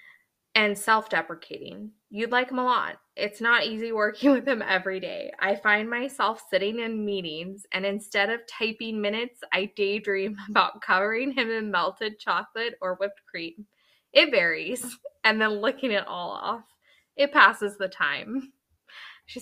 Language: English